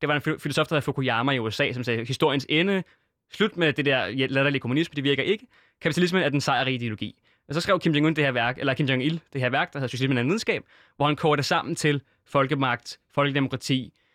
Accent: native